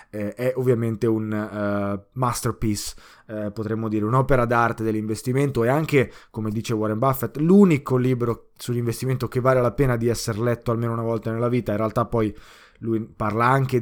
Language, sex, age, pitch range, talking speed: Italian, male, 20-39, 110-130 Hz, 165 wpm